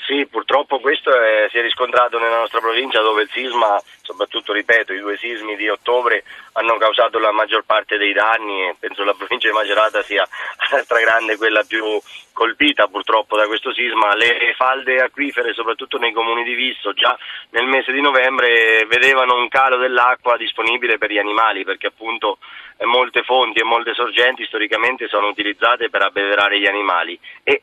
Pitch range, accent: 110-125 Hz, native